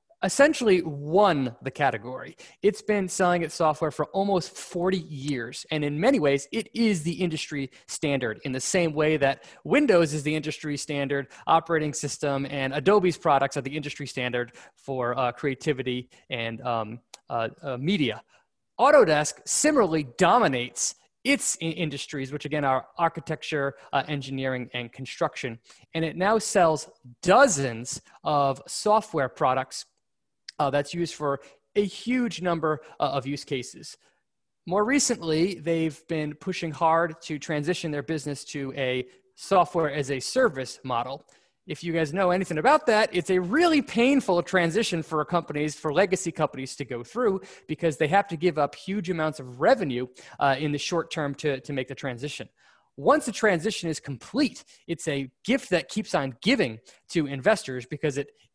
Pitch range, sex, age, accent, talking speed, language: 140-180 Hz, male, 20-39, American, 160 wpm, English